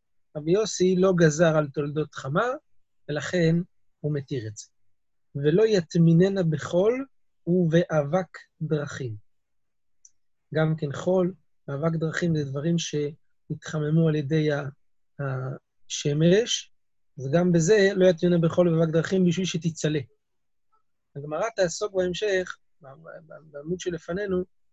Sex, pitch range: male, 150-180 Hz